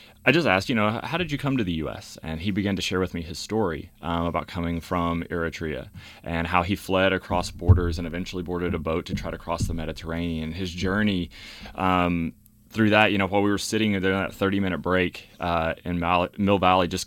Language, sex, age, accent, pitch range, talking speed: English, male, 30-49, American, 85-100 Hz, 220 wpm